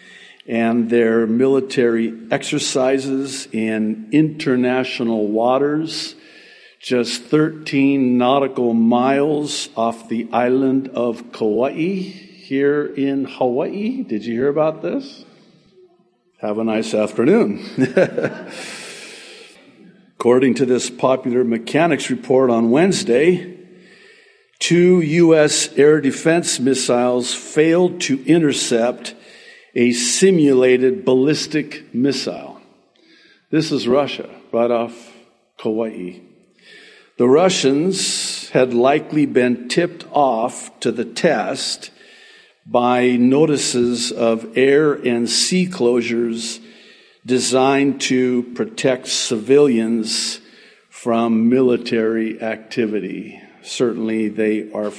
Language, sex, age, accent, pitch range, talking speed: English, male, 50-69, American, 115-155 Hz, 90 wpm